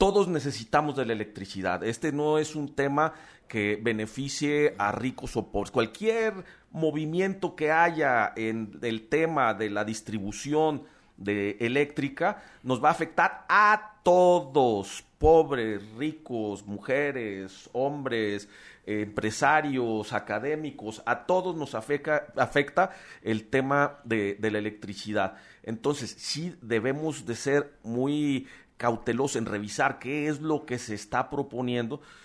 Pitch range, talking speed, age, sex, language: 110-150 Hz, 125 wpm, 40-59, male, Spanish